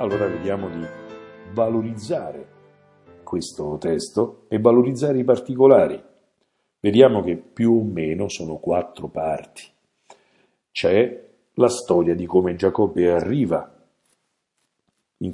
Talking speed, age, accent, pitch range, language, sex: 100 wpm, 50-69, native, 90-130 Hz, Italian, male